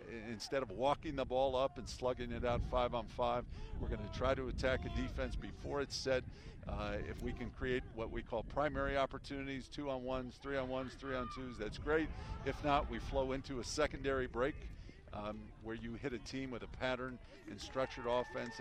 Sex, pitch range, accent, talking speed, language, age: male, 115-140 Hz, American, 210 wpm, English, 50-69